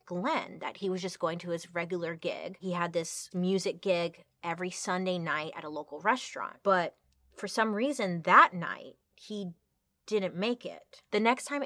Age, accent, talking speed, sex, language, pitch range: 20-39, American, 180 wpm, female, English, 170-215 Hz